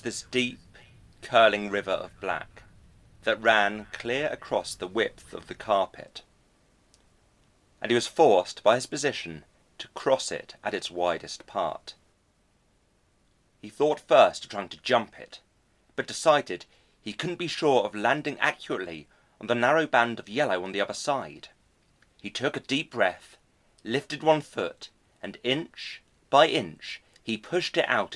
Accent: British